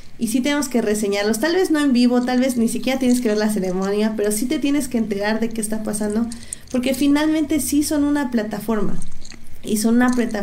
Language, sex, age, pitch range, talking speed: Spanish, female, 20-39, 205-240 Hz, 220 wpm